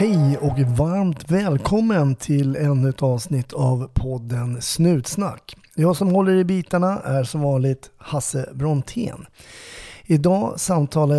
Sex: male